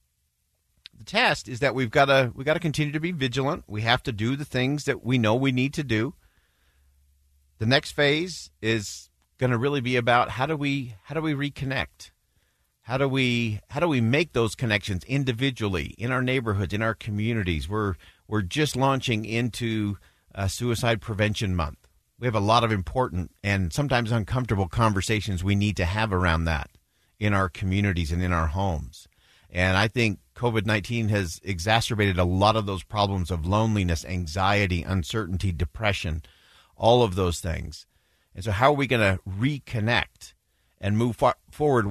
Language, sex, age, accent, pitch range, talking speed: English, male, 50-69, American, 90-125 Hz, 170 wpm